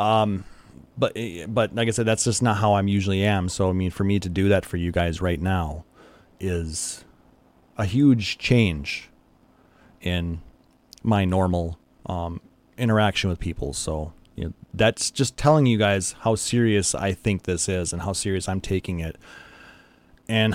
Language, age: English, 30-49